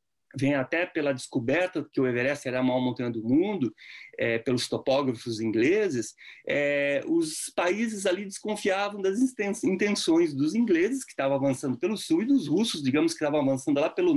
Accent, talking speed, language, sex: Brazilian, 170 wpm, English, male